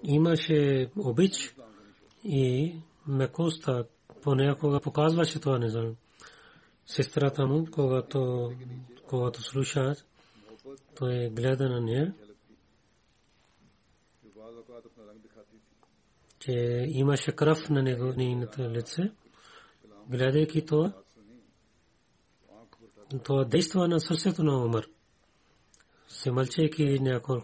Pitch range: 120-150 Hz